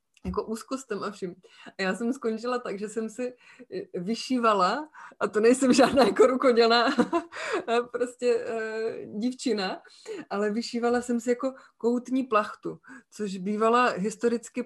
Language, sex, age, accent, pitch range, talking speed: Czech, female, 20-39, native, 205-245 Hz, 130 wpm